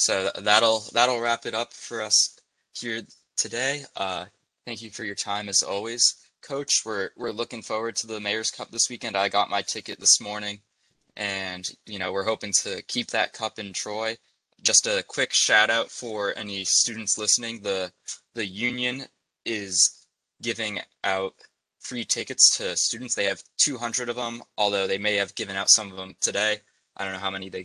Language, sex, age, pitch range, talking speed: English, male, 20-39, 95-115 Hz, 185 wpm